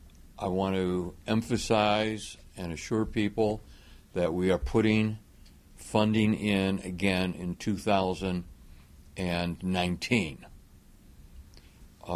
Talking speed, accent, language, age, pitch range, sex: 80 wpm, American, English, 60-79, 85-110 Hz, male